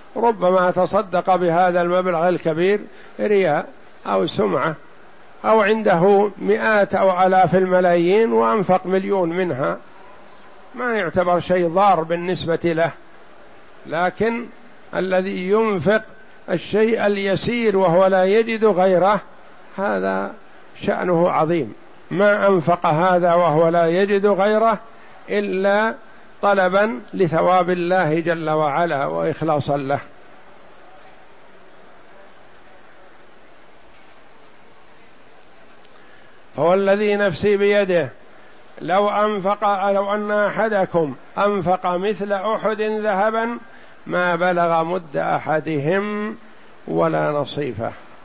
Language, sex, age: Arabic, male, 60-79